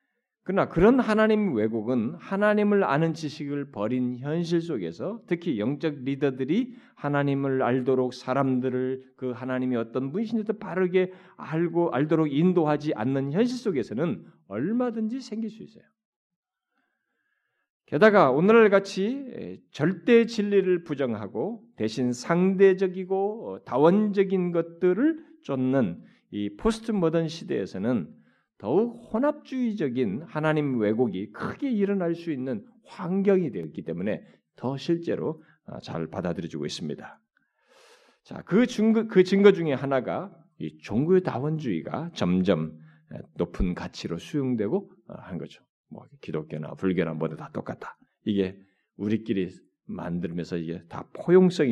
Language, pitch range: Korean, 125-205 Hz